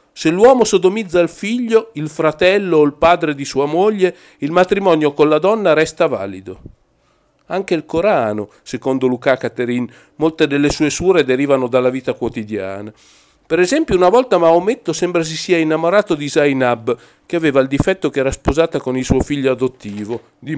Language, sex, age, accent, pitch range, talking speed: Italian, male, 50-69, native, 130-180 Hz, 170 wpm